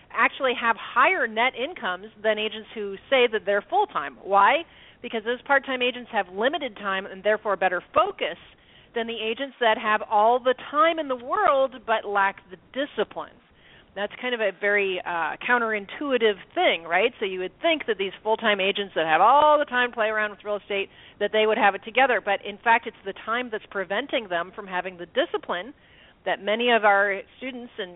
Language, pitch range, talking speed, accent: English, 200-250 Hz, 195 wpm, American